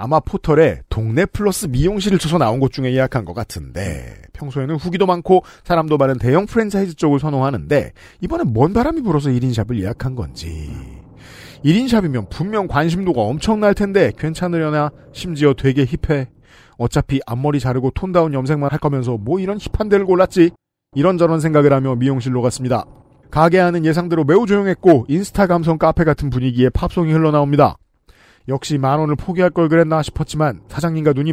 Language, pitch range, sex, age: Korean, 130-175 Hz, male, 40-59